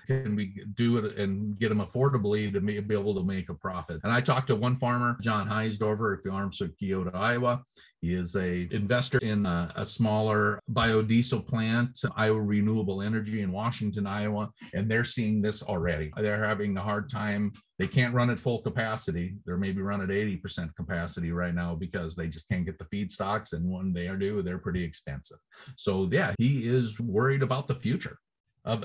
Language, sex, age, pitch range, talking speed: English, male, 40-59, 105-130 Hz, 195 wpm